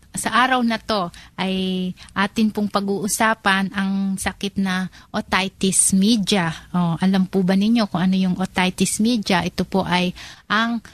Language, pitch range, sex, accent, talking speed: Filipino, 185-215 Hz, female, native, 150 wpm